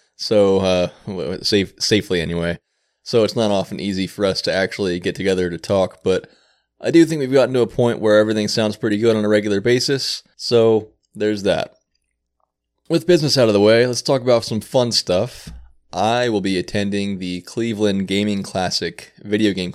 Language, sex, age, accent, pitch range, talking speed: English, male, 20-39, American, 95-110 Hz, 180 wpm